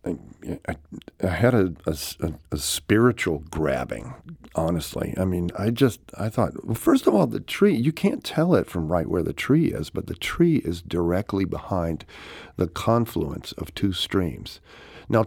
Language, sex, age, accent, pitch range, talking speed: English, male, 50-69, American, 85-120 Hz, 175 wpm